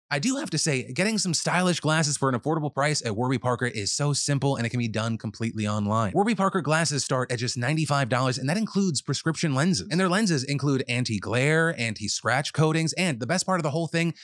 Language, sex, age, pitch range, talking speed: English, male, 30-49, 125-165 Hz, 225 wpm